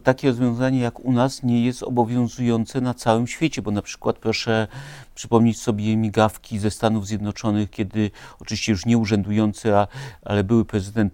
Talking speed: 155 wpm